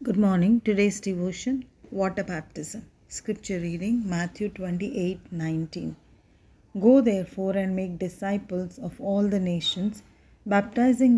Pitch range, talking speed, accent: 175-210 Hz, 115 wpm, Indian